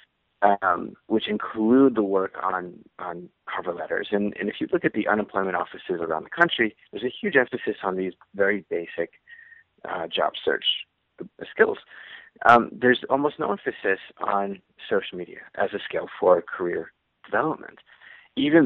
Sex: male